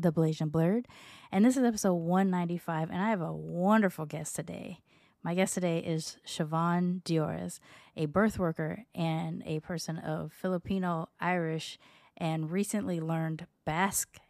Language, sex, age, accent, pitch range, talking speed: English, female, 20-39, American, 160-185 Hz, 145 wpm